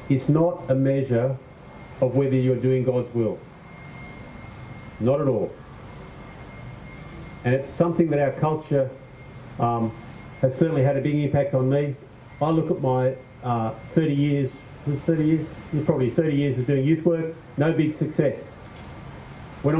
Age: 50-69